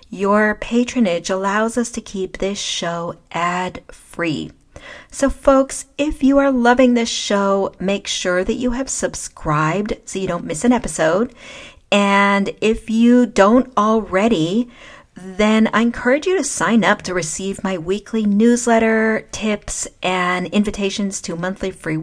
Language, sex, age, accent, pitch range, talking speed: English, female, 40-59, American, 185-230 Hz, 140 wpm